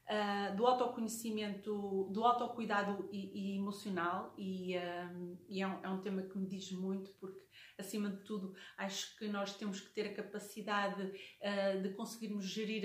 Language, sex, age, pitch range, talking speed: Portuguese, female, 30-49, 195-225 Hz, 170 wpm